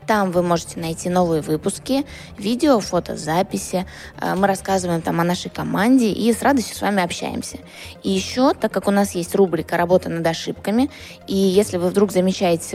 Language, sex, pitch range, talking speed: Russian, female, 175-215 Hz, 175 wpm